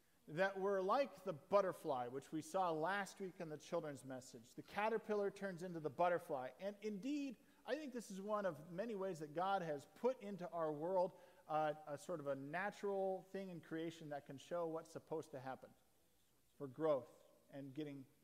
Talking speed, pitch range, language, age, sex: 190 wpm, 145-195 Hz, English, 40-59, male